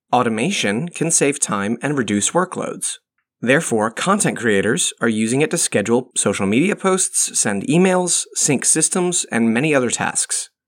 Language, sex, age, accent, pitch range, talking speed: English, male, 30-49, American, 115-145 Hz, 145 wpm